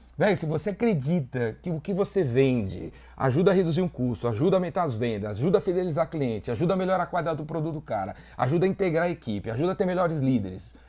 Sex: male